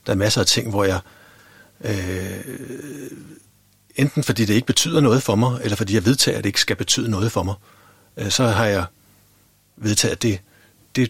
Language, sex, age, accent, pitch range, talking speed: Danish, male, 60-79, native, 100-125 Hz, 195 wpm